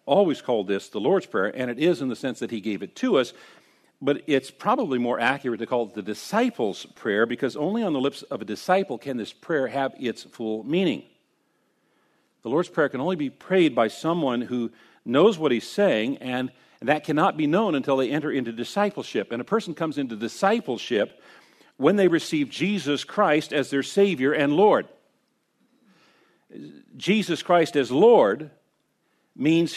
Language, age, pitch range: English, 50-69, 125-185 Hz